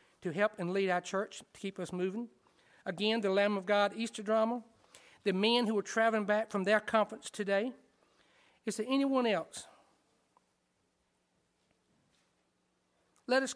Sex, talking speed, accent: male, 145 wpm, American